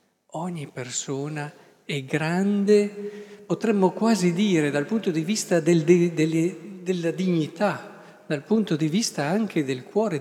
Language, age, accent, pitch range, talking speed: Italian, 50-69, native, 130-185 Hz, 120 wpm